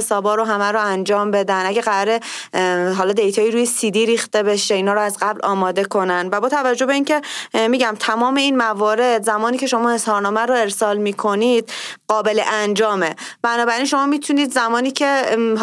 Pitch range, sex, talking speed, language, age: 210-250 Hz, female, 170 wpm, Persian, 30-49